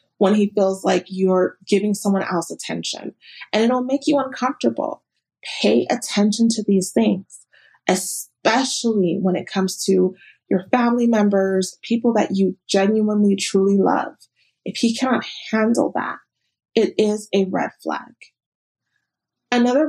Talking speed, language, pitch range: 135 wpm, English, 195-235 Hz